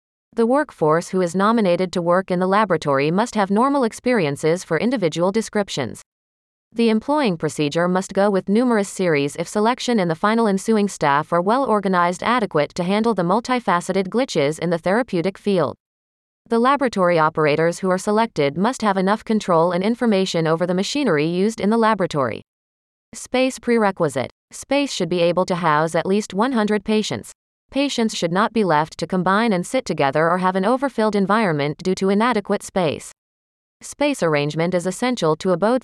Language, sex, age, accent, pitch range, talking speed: English, female, 30-49, American, 170-225 Hz, 170 wpm